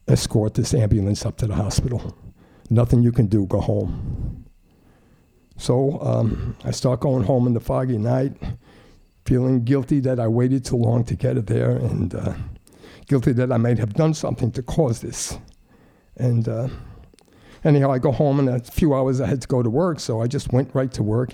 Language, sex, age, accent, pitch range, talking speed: English, male, 60-79, American, 110-125 Hz, 195 wpm